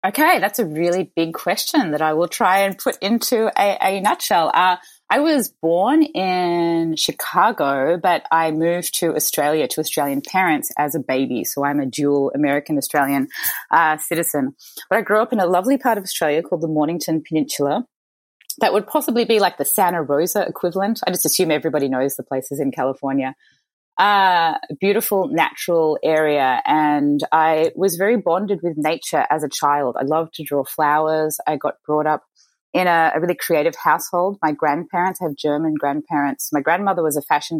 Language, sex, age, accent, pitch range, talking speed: English, female, 20-39, Australian, 145-185 Hz, 175 wpm